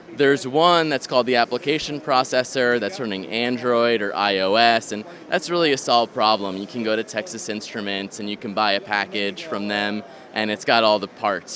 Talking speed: 195 wpm